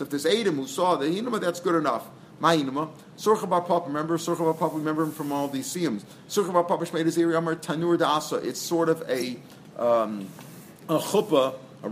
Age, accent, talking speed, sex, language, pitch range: 50-69, American, 200 wpm, male, English, 140-165 Hz